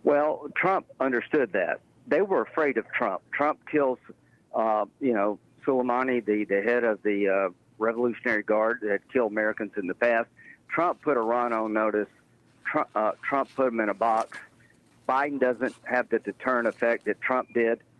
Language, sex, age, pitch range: English, male, 50-69, 110-130 Hz